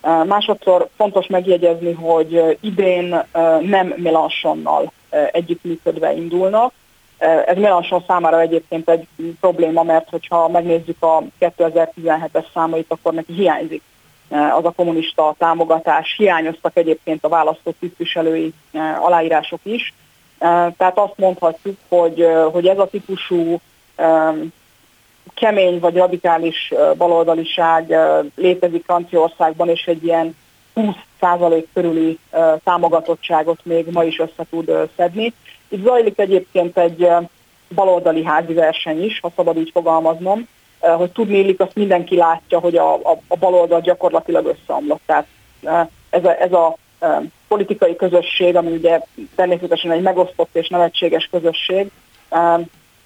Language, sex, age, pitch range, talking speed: Hungarian, female, 30-49, 165-180 Hz, 115 wpm